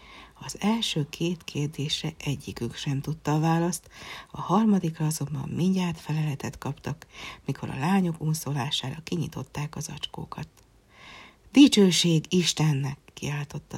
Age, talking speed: 60-79, 110 wpm